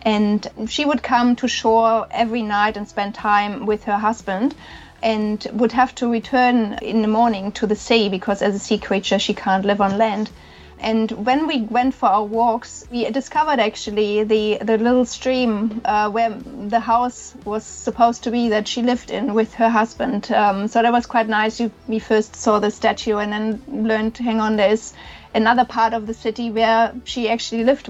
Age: 30-49